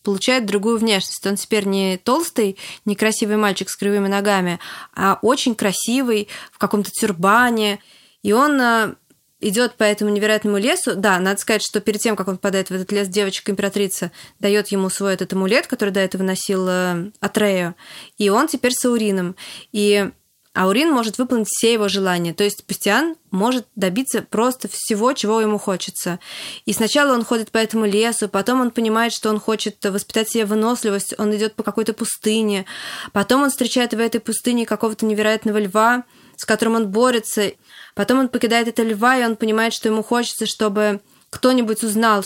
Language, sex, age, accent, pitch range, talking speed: Russian, female, 20-39, native, 200-230 Hz, 165 wpm